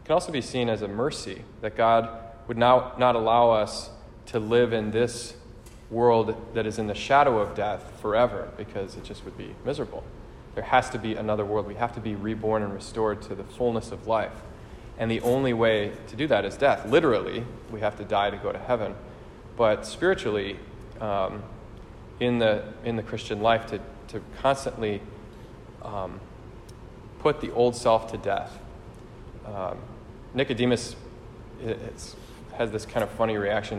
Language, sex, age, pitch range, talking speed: English, male, 20-39, 105-115 Hz, 170 wpm